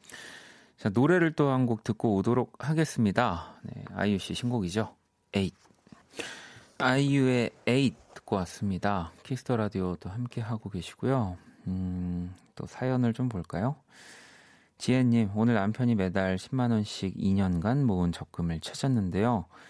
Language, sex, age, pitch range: Korean, male, 30-49, 90-120 Hz